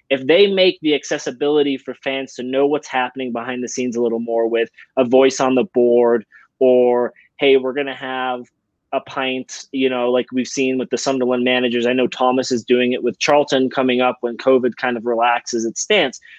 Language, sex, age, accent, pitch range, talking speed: English, male, 20-39, American, 125-160 Hz, 210 wpm